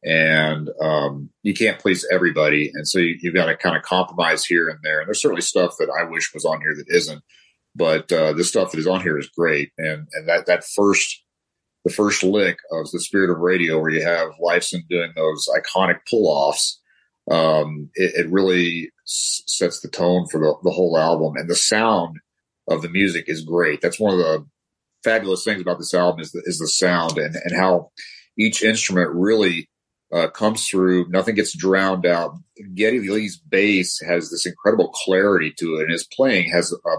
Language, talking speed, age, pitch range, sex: English, 200 wpm, 40-59, 80-95 Hz, male